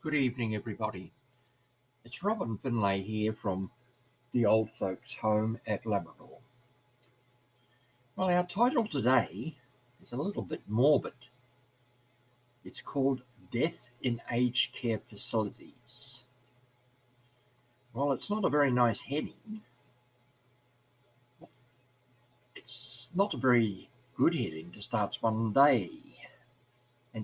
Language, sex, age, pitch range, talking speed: English, male, 60-79, 120-130 Hz, 105 wpm